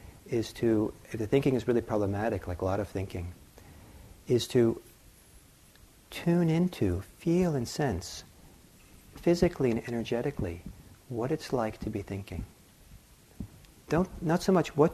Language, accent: English, American